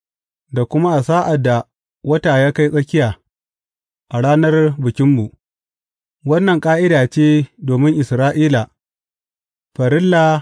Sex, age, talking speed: male, 30-49, 85 wpm